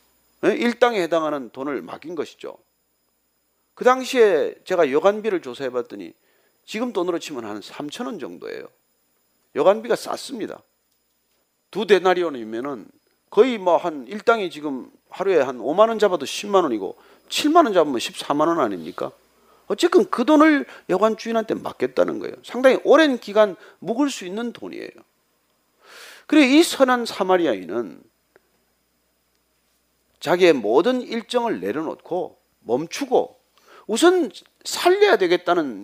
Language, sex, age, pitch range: Korean, male, 40-59, 180-270 Hz